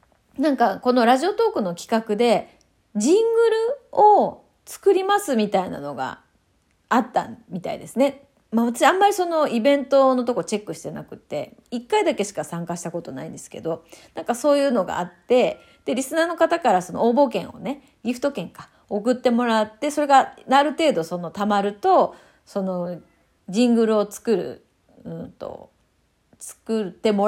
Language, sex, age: Japanese, female, 30-49